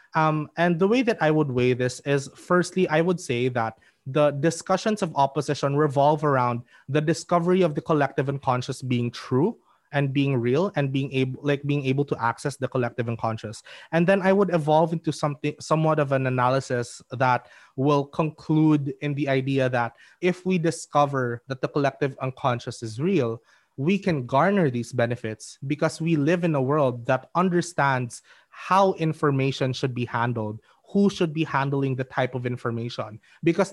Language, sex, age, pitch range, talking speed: English, male, 20-39, 130-180 Hz, 175 wpm